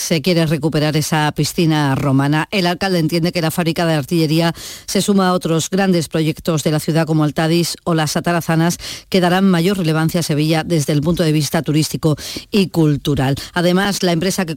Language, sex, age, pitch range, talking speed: Spanish, female, 40-59, 150-180 Hz, 190 wpm